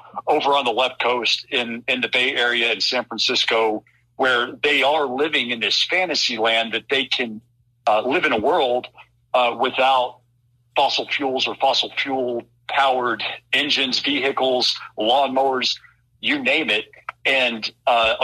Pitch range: 115-130 Hz